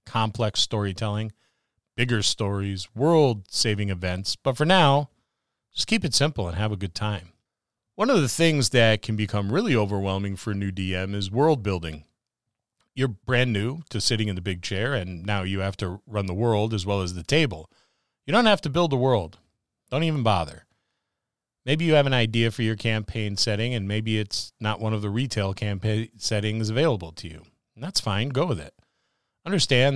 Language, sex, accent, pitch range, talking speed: English, male, American, 100-125 Hz, 190 wpm